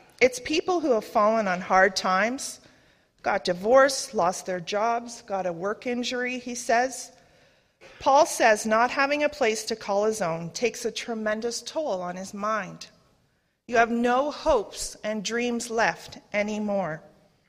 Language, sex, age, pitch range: English, female, 40-59, 185-245 Hz